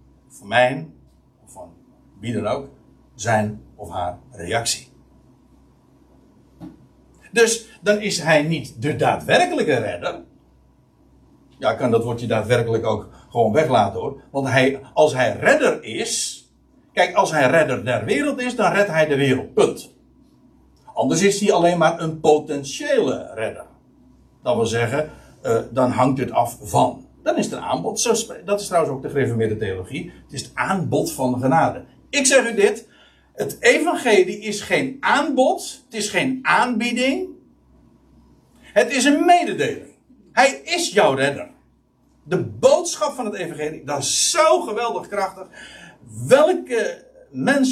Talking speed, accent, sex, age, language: 145 wpm, Dutch, male, 60-79, Dutch